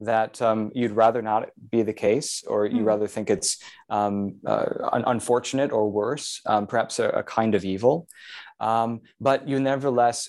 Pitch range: 105-125 Hz